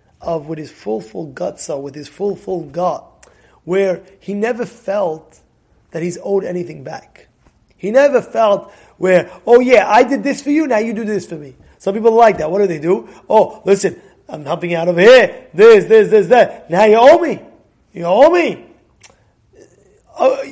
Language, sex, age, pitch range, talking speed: English, male, 30-49, 195-275 Hz, 190 wpm